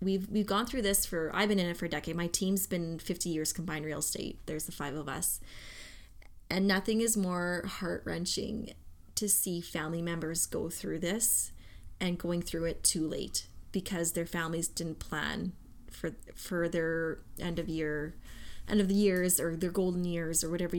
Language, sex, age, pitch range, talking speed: English, female, 20-39, 160-185 Hz, 190 wpm